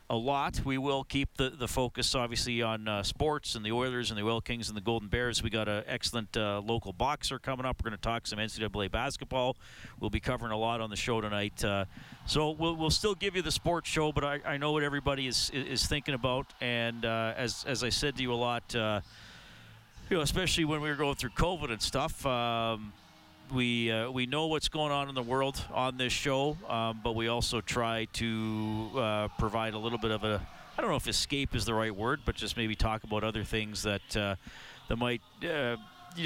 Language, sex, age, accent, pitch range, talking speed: English, male, 40-59, American, 110-135 Hz, 230 wpm